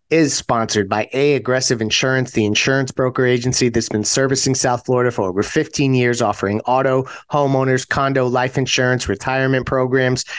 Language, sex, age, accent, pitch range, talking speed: English, male, 30-49, American, 120-145 Hz, 155 wpm